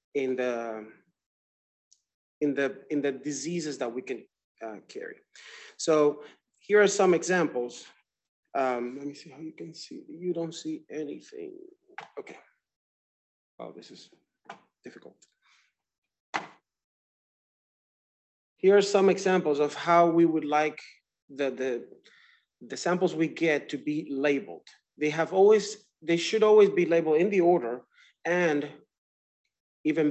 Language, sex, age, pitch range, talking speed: English, male, 30-49, 145-200 Hz, 130 wpm